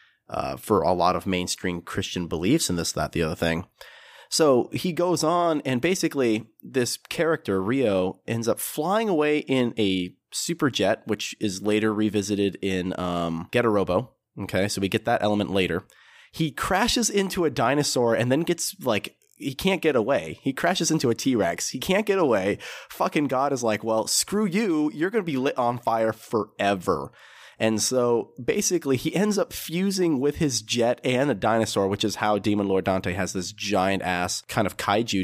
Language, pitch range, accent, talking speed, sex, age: English, 95-135 Hz, American, 185 wpm, male, 30-49